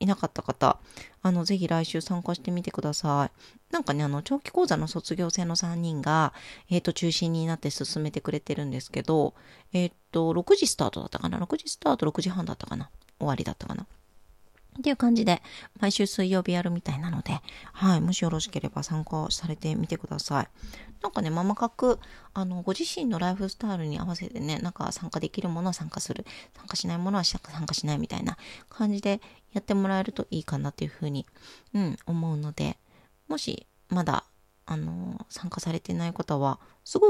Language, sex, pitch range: Japanese, female, 160-210 Hz